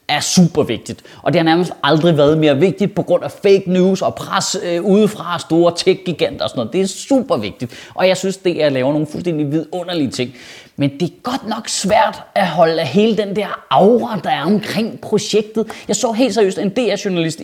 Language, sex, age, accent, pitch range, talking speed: Danish, male, 30-49, native, 160-215 Hz, 215 wpm